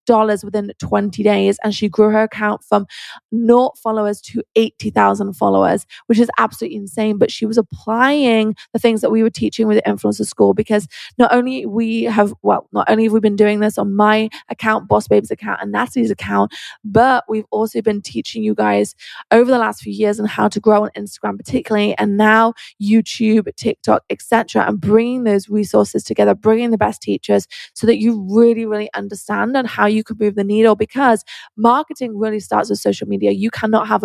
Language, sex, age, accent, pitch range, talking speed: English, female, 20-39, British, 185-230 Hz, 195 wpm